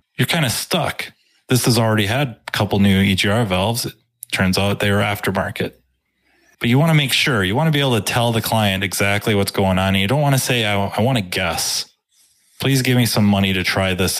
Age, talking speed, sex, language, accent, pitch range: 20-39, 240 wpm, male, English, American, 95-115 Hz